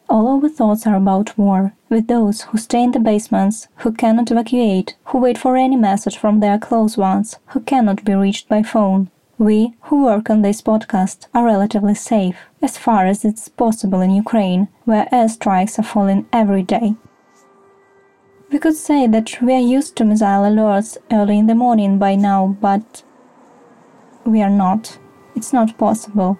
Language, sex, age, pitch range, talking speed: Ukrainian, female, 20-39, 205-245 Hz, 175 wpm